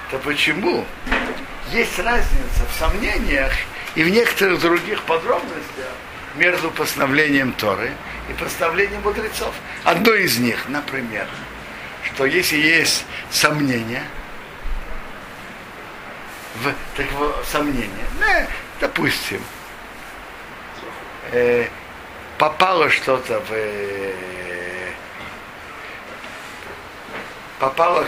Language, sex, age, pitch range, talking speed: Russian, male, 60-79, 120-160 Hz, 75 wpm